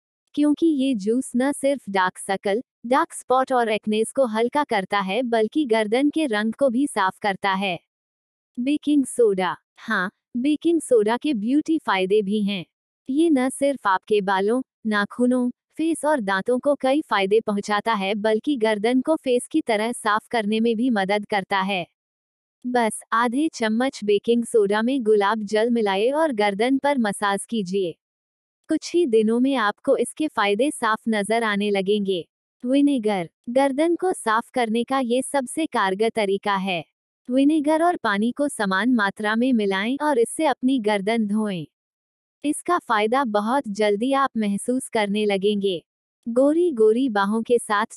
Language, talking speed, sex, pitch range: Hindi, 150 wpm, female, 205-270 Hz